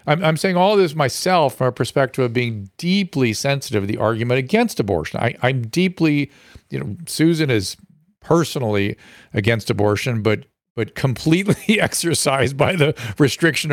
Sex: male